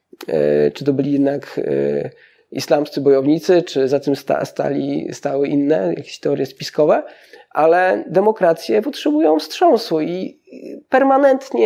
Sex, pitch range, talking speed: male, 155-225 Hz, 110 wpm